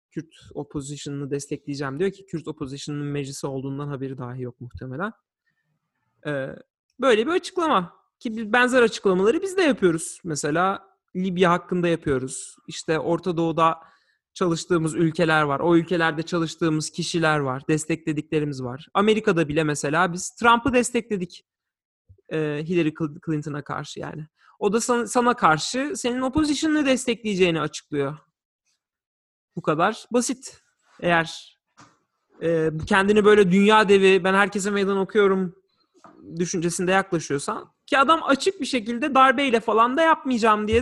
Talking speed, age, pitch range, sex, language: 125 wpm, 40-59, 165-240 Hz, male, Turkish